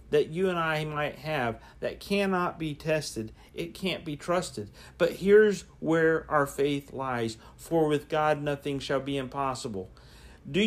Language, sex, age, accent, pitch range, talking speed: English, male, 50-69, American, 140-165 Hz, 155 wpm